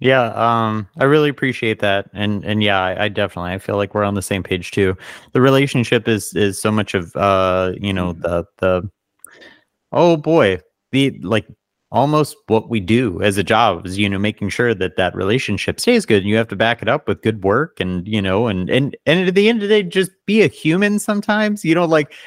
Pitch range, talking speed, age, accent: 100-125 Hz, 225 wpm, 30-49, American